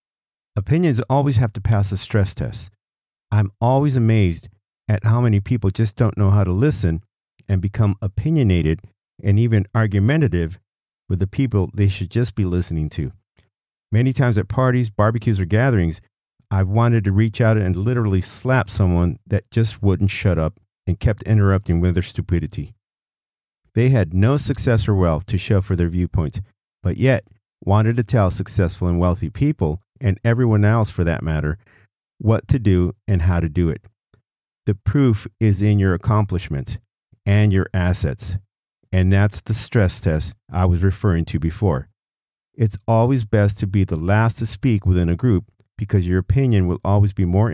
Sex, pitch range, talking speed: male, 95-115 Hz, 170 wpm